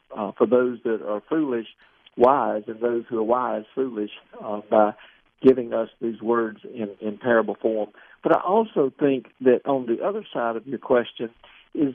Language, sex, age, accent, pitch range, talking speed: English, male, 60-79, American, 120-170 Hz, 180 wpm